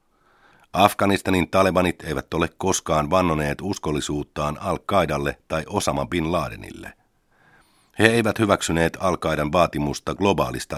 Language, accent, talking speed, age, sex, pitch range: Finnish, native, 100 wpm, 50-69, male, 75-95 Hz